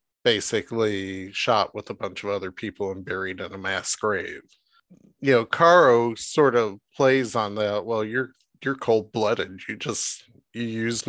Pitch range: 100-120 Hz